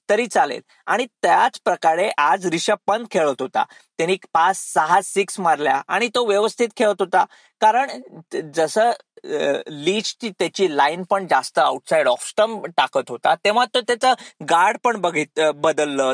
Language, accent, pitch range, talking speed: Marathi, native, 160-225 Hz, 150 wpm